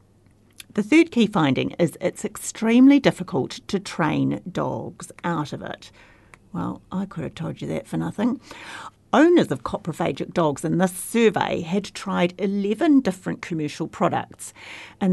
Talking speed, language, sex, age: 145 wpm, English, female, 50-69